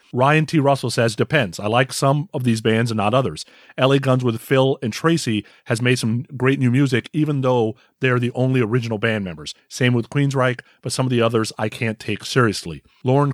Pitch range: 115-140 Hz